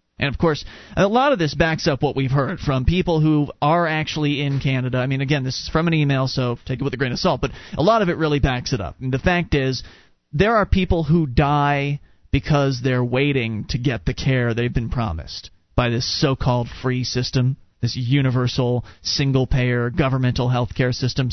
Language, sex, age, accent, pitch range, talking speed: English, male, 30-49, American, 130-175 Hz, 210 wpm